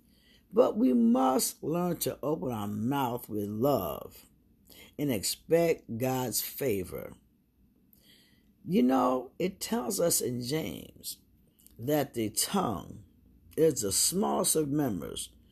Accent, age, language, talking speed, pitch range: American, 50-69, English, 110 wpm, 105-155 Hz